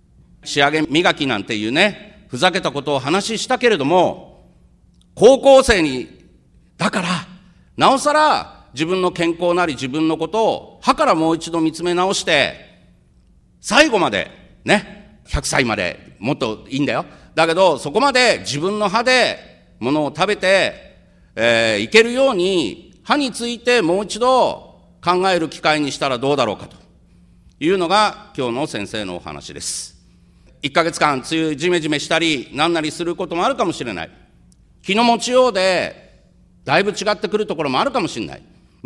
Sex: male